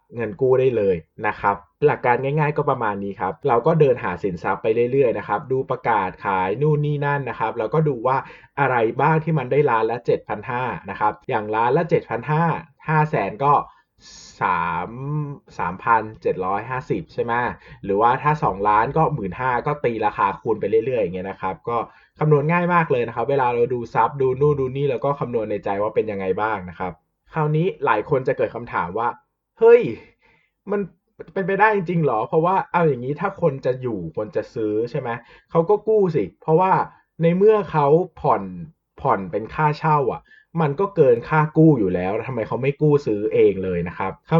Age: 20-39